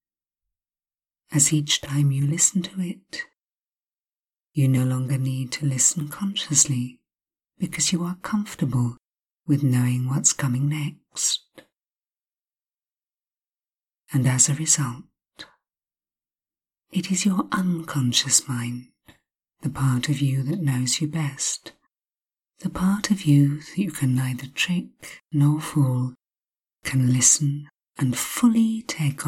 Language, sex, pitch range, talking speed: English, female, 125-165 Hz, 115 wpm